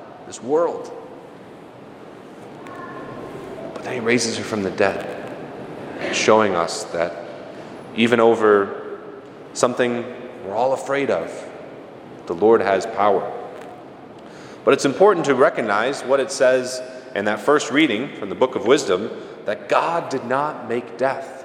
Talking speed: 130 wpm